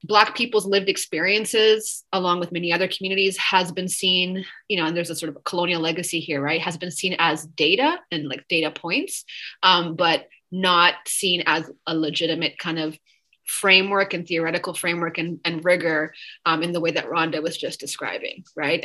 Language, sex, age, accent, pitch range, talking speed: English, female, 20-39, American, 160-190 Hz, 185 wpm